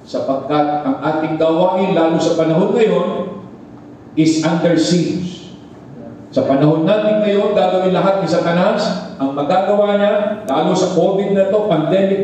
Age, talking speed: 50-69, 140 wpm